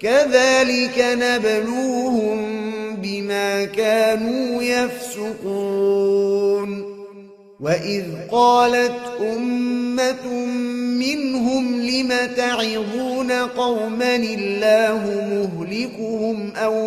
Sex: male